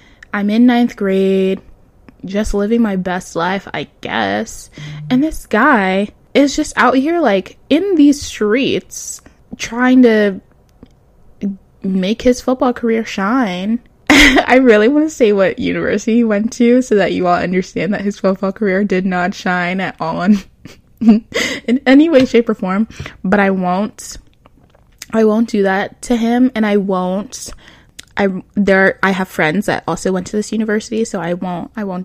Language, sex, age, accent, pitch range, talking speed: English, female, 10-29, American, 195-250 Hz, 165 wpm